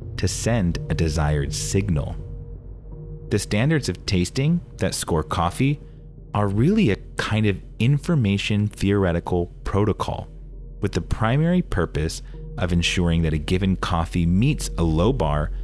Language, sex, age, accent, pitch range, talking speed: English, male, 30-49, American, 75-110 Hz, 130 wpm